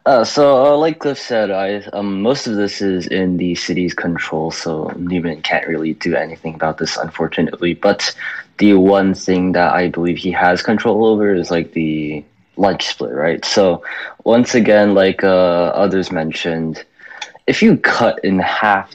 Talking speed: 170 wpm